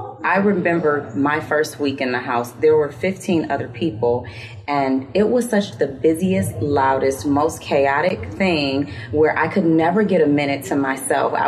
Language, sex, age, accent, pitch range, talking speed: English, female, 30-49, American, 130-165 Hz, 165 wpm